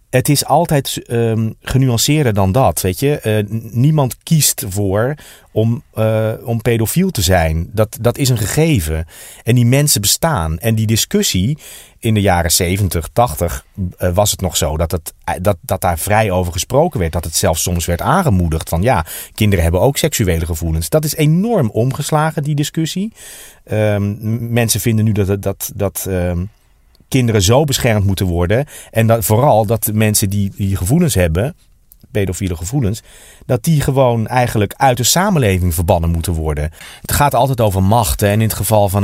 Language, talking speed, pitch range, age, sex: Dutch, 170 wpm, 95-130 Hz, 40-59, male